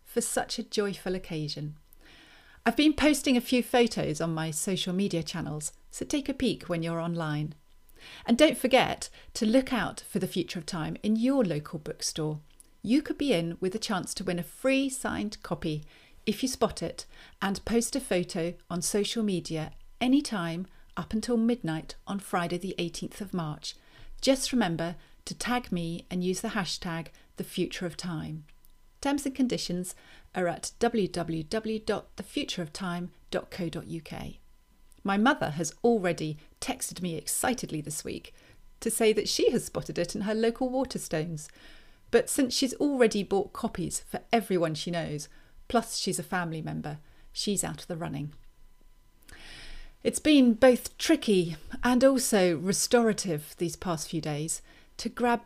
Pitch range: 165-235 Hz